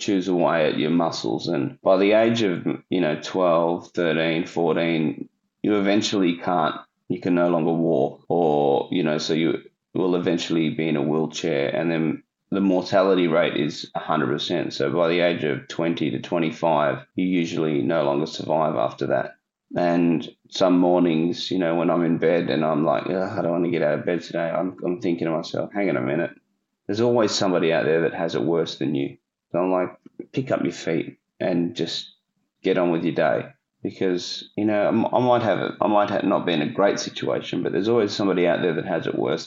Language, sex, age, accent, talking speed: English, male, 20-39, Australian, 215 wpm